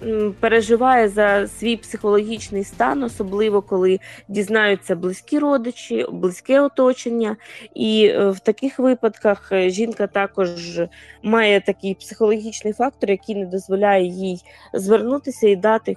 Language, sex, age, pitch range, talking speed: Ukrainian, female, 20-39, 195-230 Hz, 110 wpm